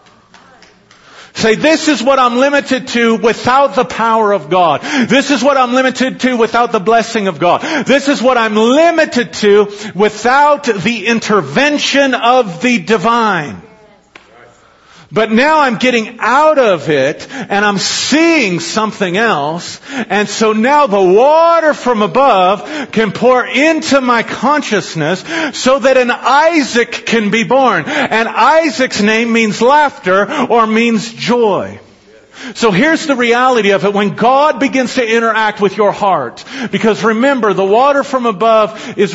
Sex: male